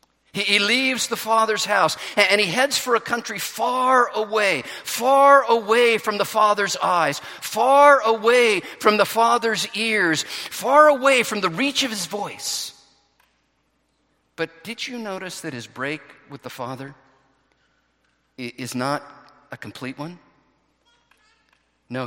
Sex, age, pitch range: male, 50-69, 155-225 Hz